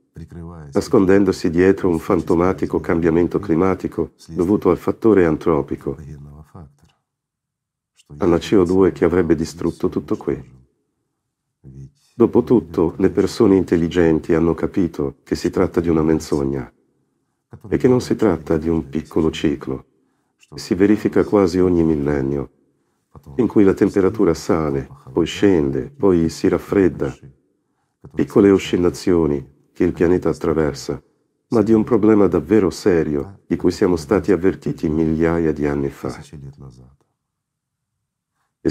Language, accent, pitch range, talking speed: Italian, native, 75-95 Hz, 115 wpm